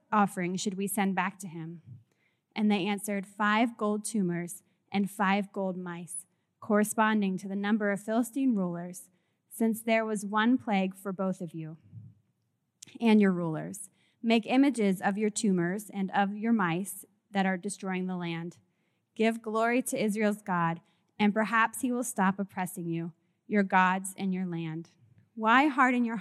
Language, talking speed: English, 160 wpm